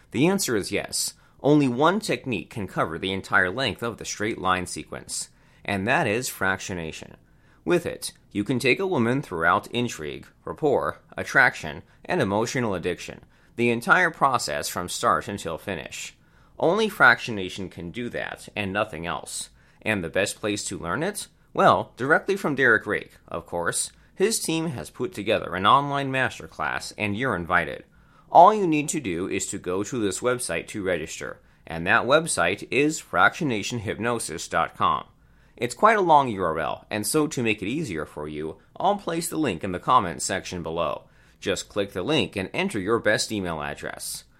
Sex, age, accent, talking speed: male, 30-49, American, 170 wpm